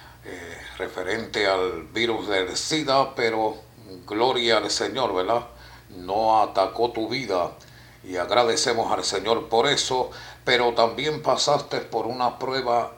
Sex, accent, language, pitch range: male, American, English, 95-120 Hz